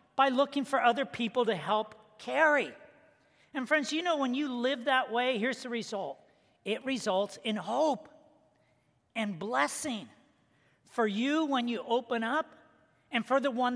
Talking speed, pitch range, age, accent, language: 155 wpm, 210-255 Hz, 40-59, American, English